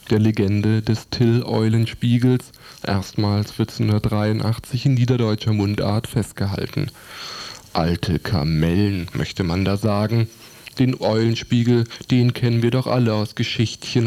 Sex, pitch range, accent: male, 110-130 Hz, German